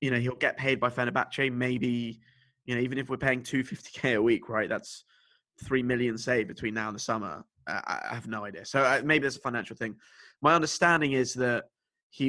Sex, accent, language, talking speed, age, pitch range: male, British, English, 210 wpm, 20-39, 115-135 Hz